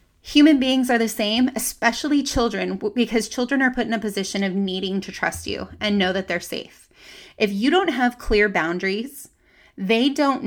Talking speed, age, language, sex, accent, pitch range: 185 wpm, 20-39, English, female, American, 200-240 Hz